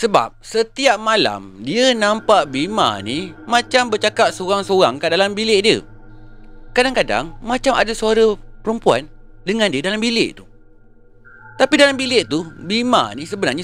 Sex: male